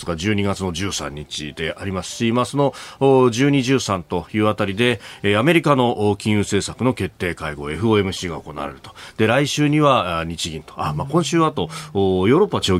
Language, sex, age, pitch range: Japanese, male, 40-59, 90-125 Hz